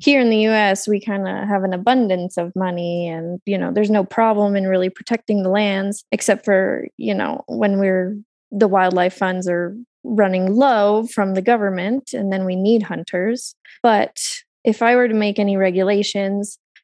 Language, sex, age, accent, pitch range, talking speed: English, female, 20-39, American, 195-225 Hz, 180 wpm